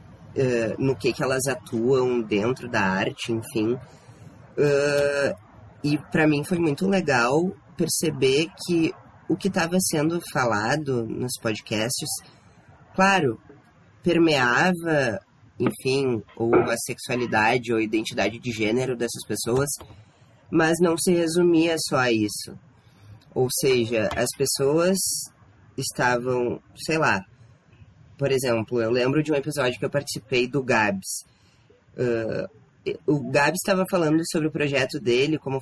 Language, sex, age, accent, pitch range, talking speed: Portuguese, female, 20-39, Brazilian, 120-165 Hz, 125 wpm